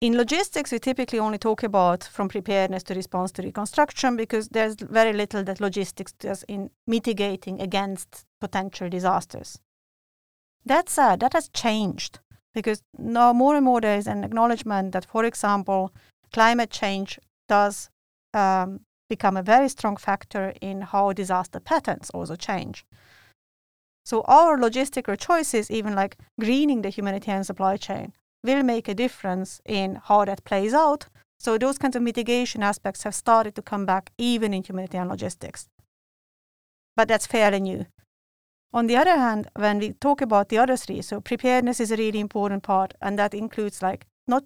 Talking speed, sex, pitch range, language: 160 wpm, female, 195-235 Hz, English